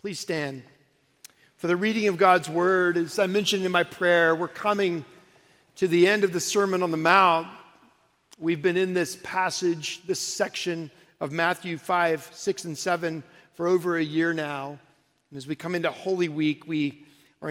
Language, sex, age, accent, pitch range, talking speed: English, male, 50-69, American, 155-195 Hz, 180 wpm